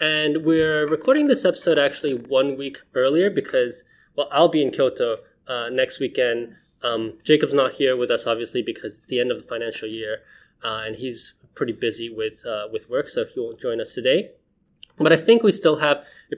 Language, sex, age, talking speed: English, male, 20-39, 200 wpm